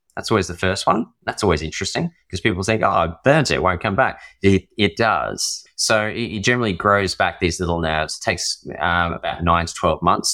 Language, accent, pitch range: English, Australian, 80-105 Hz